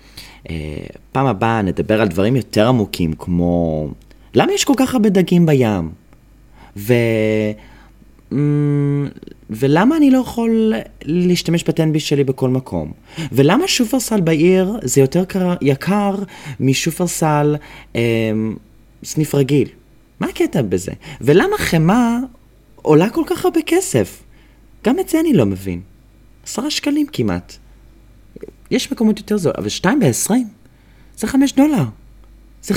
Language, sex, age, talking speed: Hebrew, male, 30-49, 125 wpm